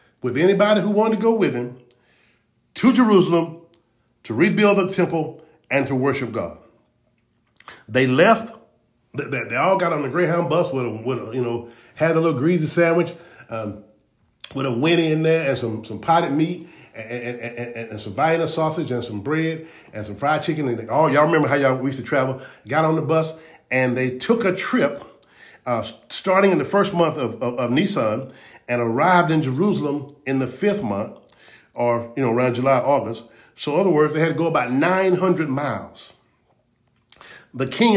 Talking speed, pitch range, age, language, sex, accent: 190 wpm, 125-170 Hz, 40-59, English, male, American